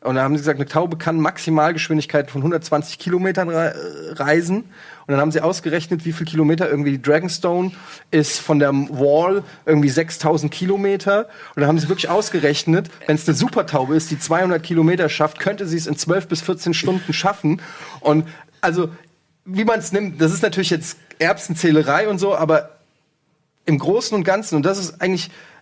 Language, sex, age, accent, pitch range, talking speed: German, male, 30-49, German, 155-180 Hz, 185 wpm